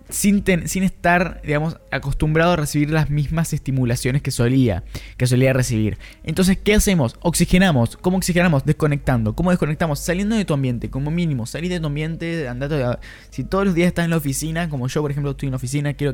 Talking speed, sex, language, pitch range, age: 190 wpm, male, Spanish, 125-175 Hz, 10-29